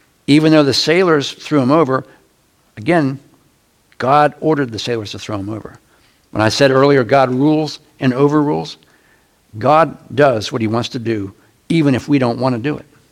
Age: 60-79